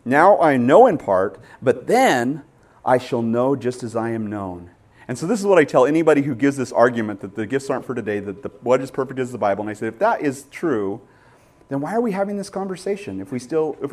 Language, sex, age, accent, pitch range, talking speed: English, male, 30-49, American, 105-140 Hz, 255 wpm